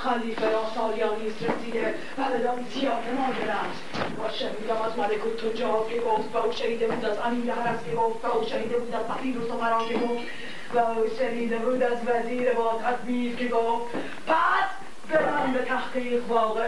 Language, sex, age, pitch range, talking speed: Persian, female, 40-59, 225-265 Hz, 165 wpm